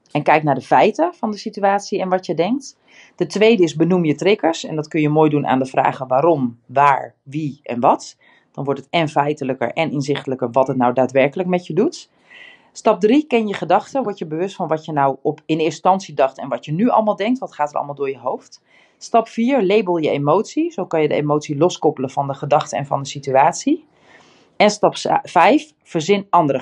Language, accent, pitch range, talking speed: Dutch, Dutch, 150-220 Hz, 225 wpm